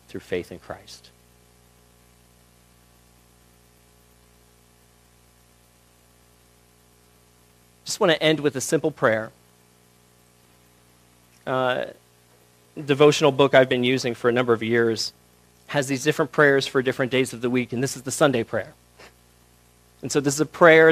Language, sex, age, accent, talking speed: English, male, 40-59, American, 130 wpm